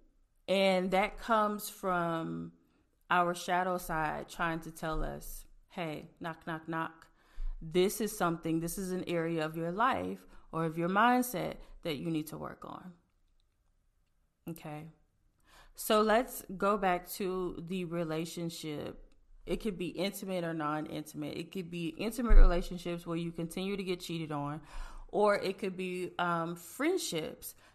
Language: English